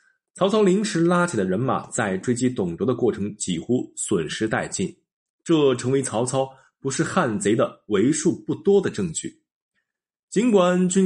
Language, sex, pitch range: Chinese, male, 120-185 Hz